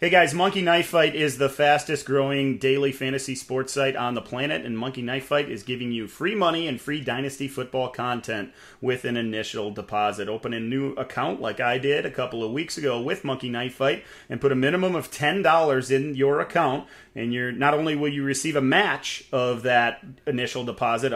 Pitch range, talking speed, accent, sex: 120-150 Hz, 205 wpm, American, male